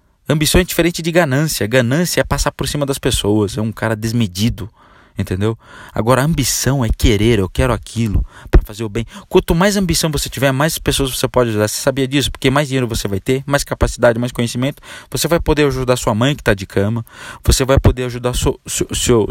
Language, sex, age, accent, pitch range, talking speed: Portuguese, male, 20-39, Brazilian, 105-130 Hz, 210 wpm